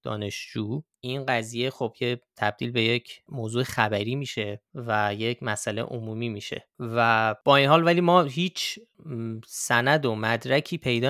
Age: 30-49